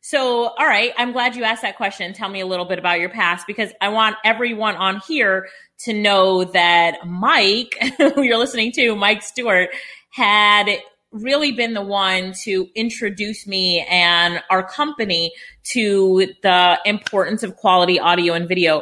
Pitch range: 180-220 Hz